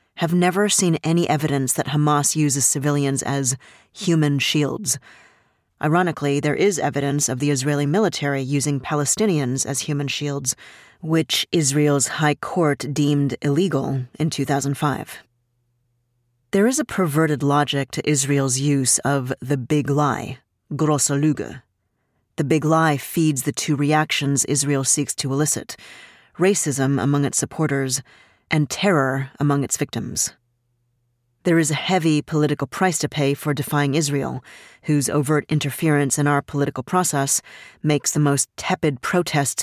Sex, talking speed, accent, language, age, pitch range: female, 135 wpm, American, English, 30-49, 135-155 Hz